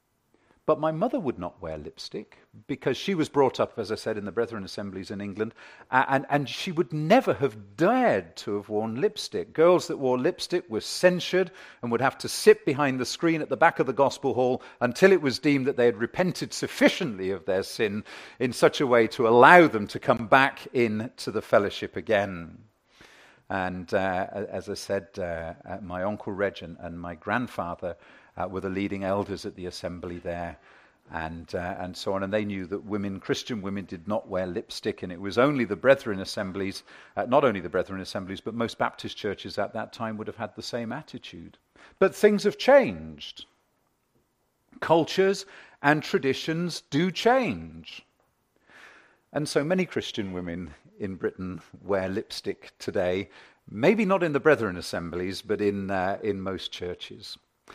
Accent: British